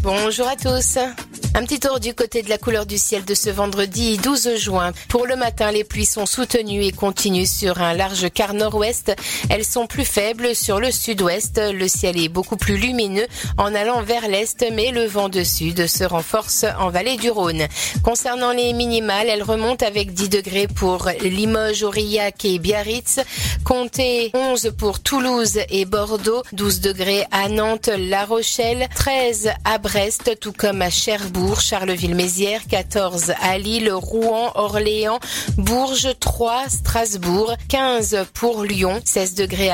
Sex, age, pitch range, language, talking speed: female, 40-59, 190-230 Hz, French, 160 wpm